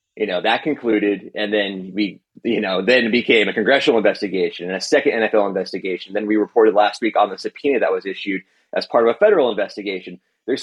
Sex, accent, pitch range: male, American, 105-145 Hz